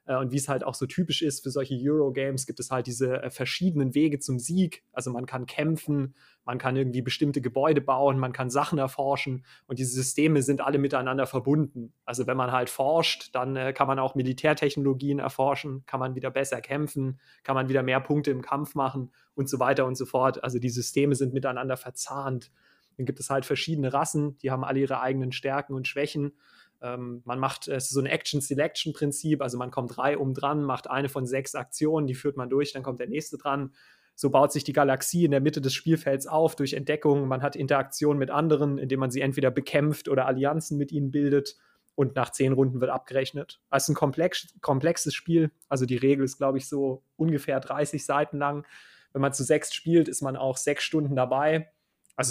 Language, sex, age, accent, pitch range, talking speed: German, male, 30-49, German, 130-145 Hz, 210 wpm